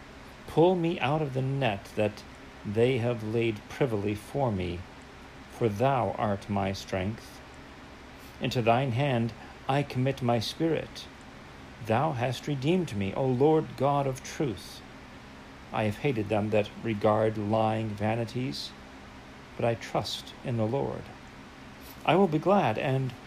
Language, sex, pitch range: English, male, 100-135 Hz